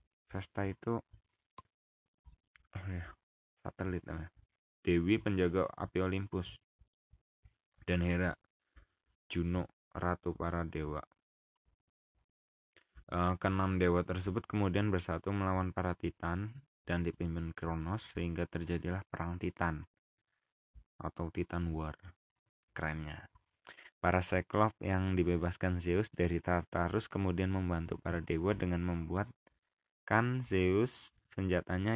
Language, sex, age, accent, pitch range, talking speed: Indonesian, male, 20-39, native, 85-95 Hz, 90 wpm